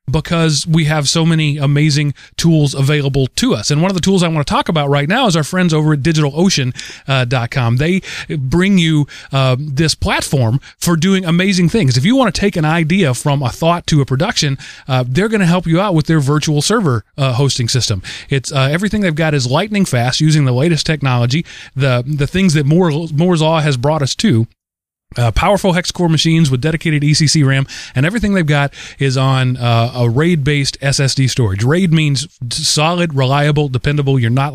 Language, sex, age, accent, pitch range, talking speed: English, male, 30-49, American, 135-165 Hz, 200 wpm